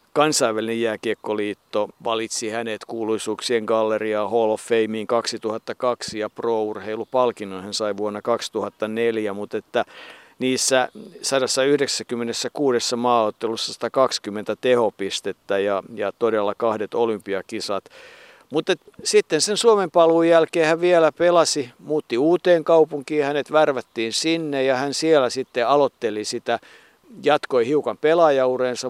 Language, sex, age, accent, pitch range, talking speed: Finnish, male, 50-69, native, 115-145 Hz, 110 wpm